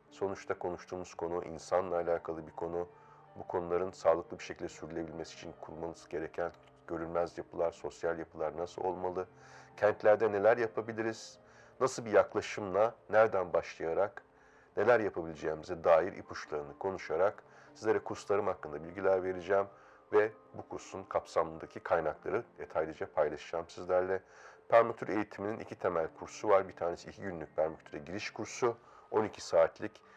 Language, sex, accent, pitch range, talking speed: Turkish, male, native, 85-110 Hz, 125 wpm